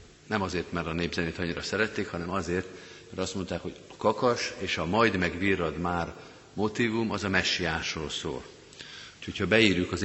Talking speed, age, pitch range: 165 wpm, 50-69, 85-105 Hz